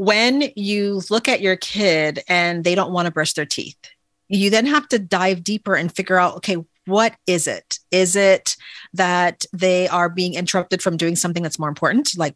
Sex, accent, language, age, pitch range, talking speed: female, American, English, 40-59, 165-195 Hz, 200 wpm